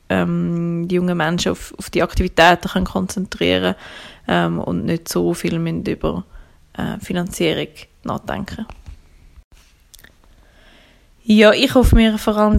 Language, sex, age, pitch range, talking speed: German, female, 20-39, 175-210 Hz, 120 wpm